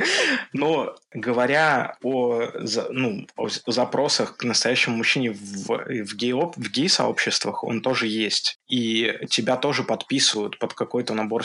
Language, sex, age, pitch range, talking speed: Russian, male, 20-39, 115-140 Hz, 120 wpm